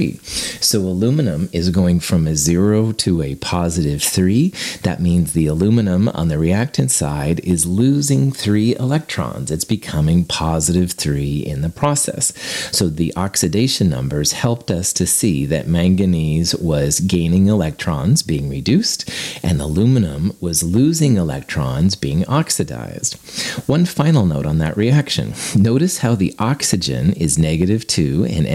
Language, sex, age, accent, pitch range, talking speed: English, male, 30-49, American, 80-115 Hz, 140 wpm